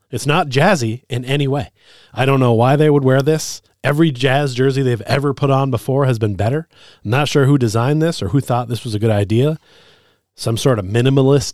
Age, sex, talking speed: 30-49, male, 225 wpm